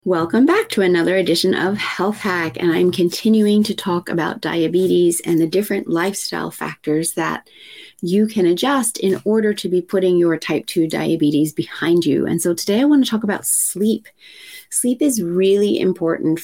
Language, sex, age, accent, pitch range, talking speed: English, female, 30-49, American, 170-200 Hz, 175 wpm